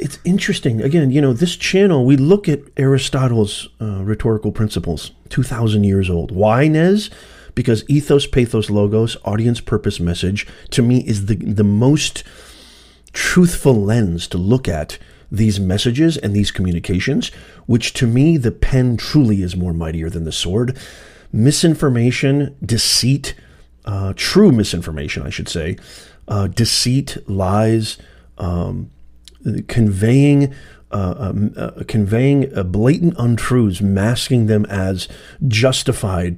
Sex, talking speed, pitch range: male, 130 wpm, 100-140 Hz